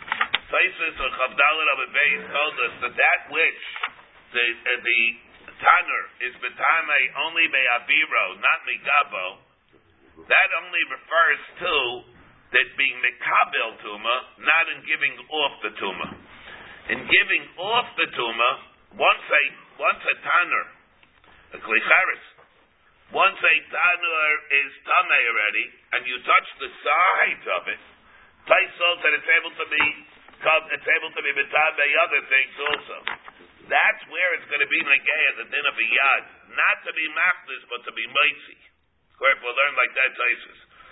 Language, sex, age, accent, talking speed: English, male, 50-69, American, 145 wpm